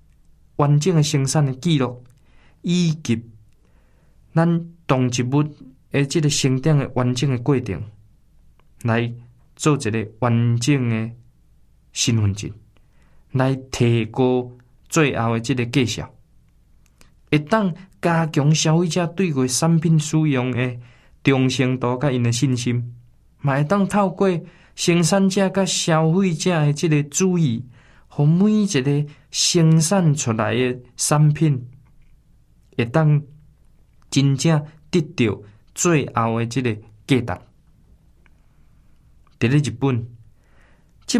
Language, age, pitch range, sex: Chinese, 20-39, 115-155 Hz, male